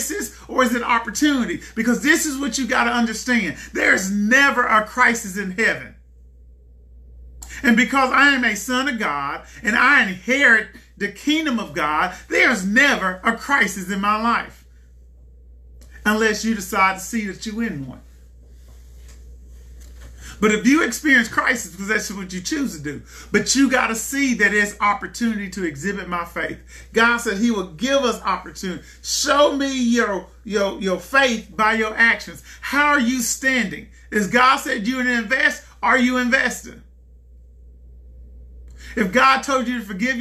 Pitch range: 170-255 Hz